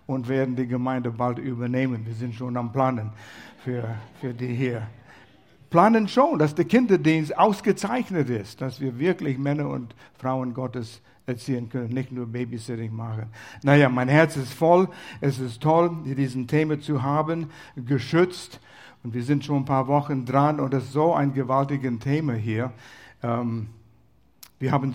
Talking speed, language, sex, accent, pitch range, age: 160 wpm, German, male, German, 125-155 Hz, 60-79